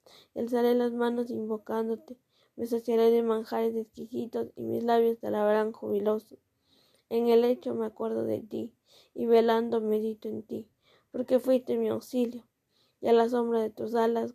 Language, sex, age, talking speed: Spanish, female, 20-39, 165 wpm